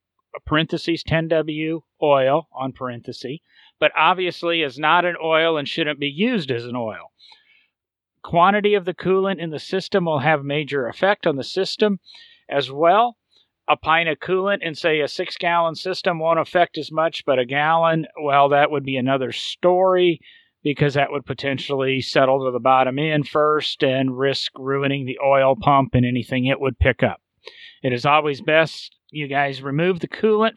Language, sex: English, male